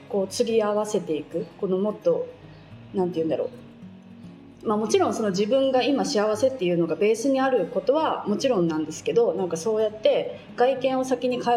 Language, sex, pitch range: Japanese, female, 185-255 Hz